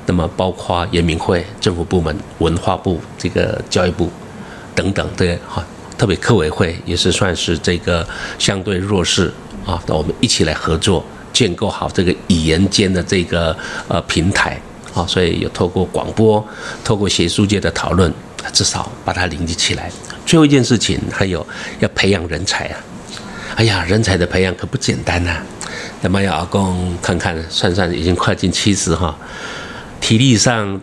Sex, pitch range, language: male, 85-105 Hz, Chinese